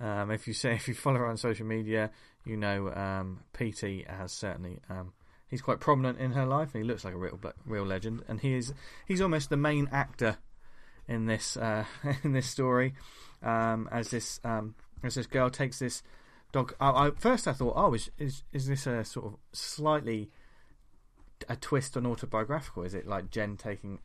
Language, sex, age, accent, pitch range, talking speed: English, male, 20-39, British, 105-135 Hz, 195 wpm